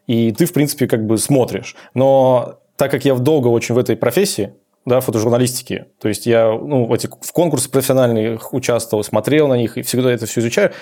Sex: male